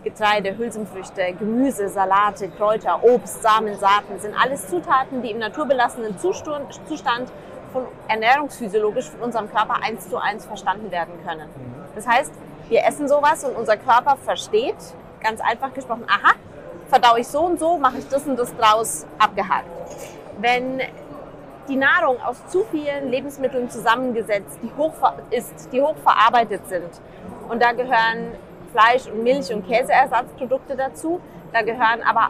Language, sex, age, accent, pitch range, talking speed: German, female, 30-49, German, 210-270 Hz, 145 wpm